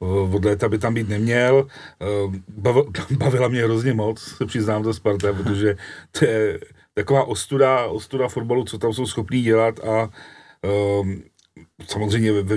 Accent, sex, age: native, male, 40-59